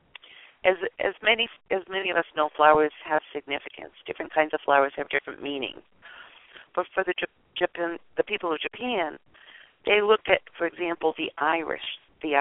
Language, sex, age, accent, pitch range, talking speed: English, female, 50-69, American, 145-190 Hz, 165 wpm